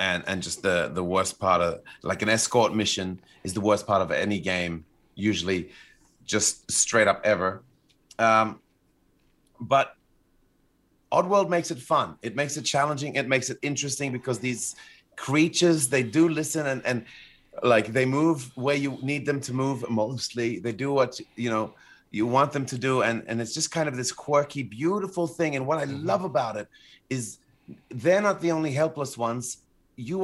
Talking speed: 180 wpm